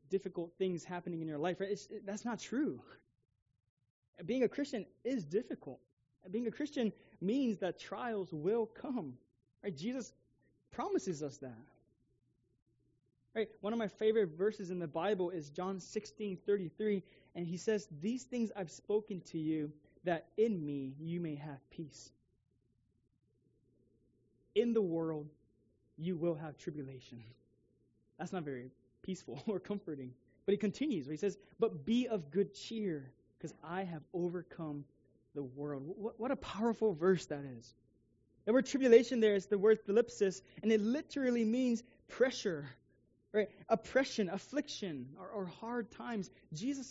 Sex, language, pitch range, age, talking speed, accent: male, English, 135-215 Hz, 20-39, 145 wpm, American